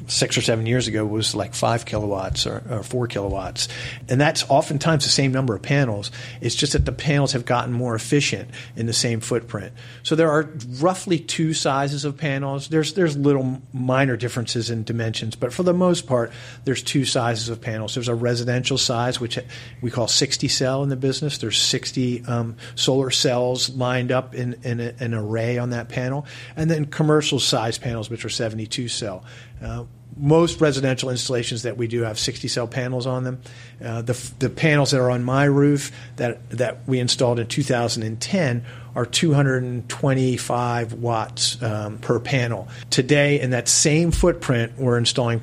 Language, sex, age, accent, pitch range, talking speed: English, male, 40-59, American, 120-135 Hz, 180 wpm